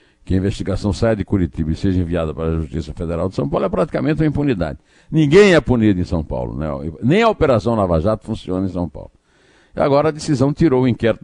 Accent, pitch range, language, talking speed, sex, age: Brazilian, 80-110 Hz, Portuguese, 225 wpm, male, 60-79